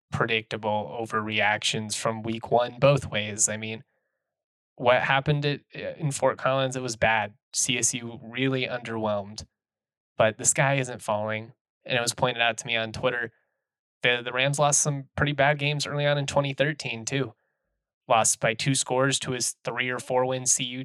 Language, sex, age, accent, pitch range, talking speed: English, male, 20-39, American, 115-135 Hz, 165 wpm